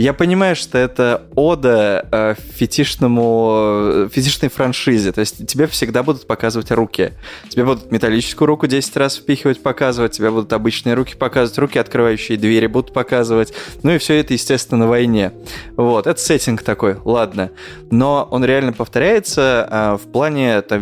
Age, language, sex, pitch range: 20-39, Russian, male, 110-145 Hz